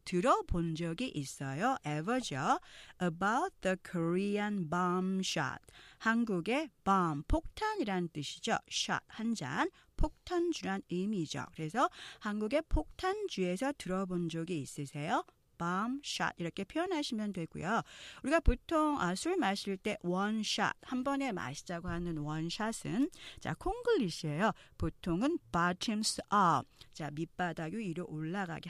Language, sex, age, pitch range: Korean, female, 40-59, 165-260 Hz